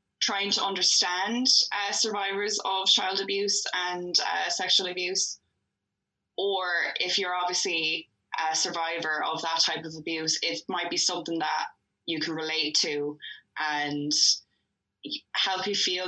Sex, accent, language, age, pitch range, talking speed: female, Irish, English, 10-29, 150-180 Hz, 135 wpm